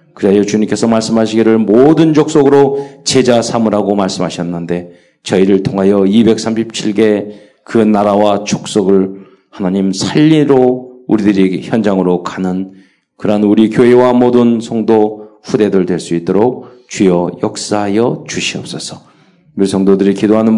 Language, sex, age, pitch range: Korean, male, 40-59, 95-125 Hz